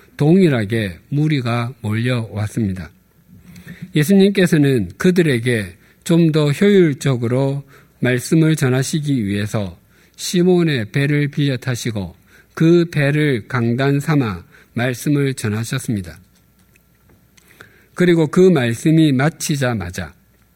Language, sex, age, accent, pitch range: Korean, male, 50-69, native, 115-165 Hz